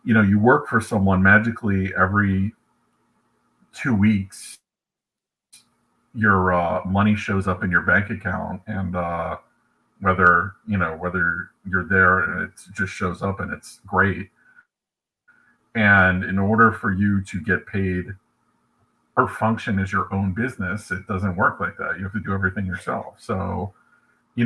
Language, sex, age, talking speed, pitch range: English, male, 40-59, 150 wpm, 90-100 Hz